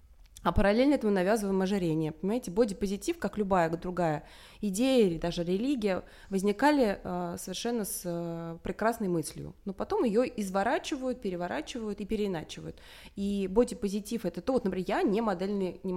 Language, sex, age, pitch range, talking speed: Russian, female, 20-39, 175-225 Hz, 135 wpm